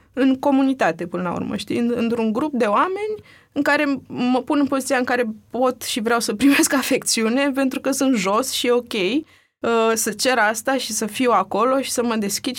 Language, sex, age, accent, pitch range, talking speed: Romanian, female, 20-39, native, 200-270 Hz, 205 wpm